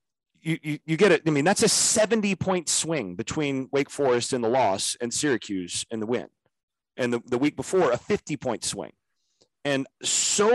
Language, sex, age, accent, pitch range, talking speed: English, male, 40-59, American, 115-150 Hz, 180 wpm